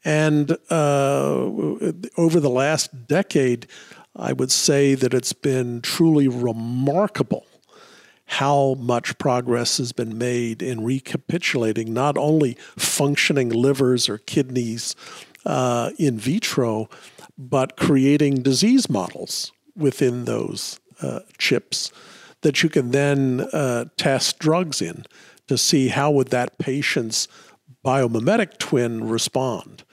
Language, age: English, 50-69